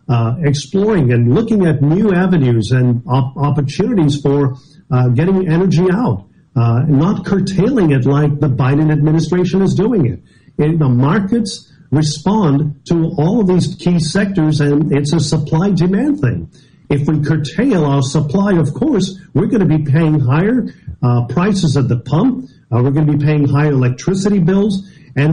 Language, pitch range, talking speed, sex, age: English, 140-185 Hz, 160 wpm, male, 50-69